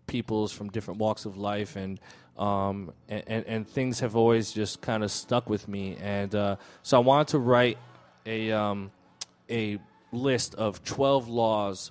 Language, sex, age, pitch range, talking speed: English, male, 20-39, 100-120 Hz, 170 wpm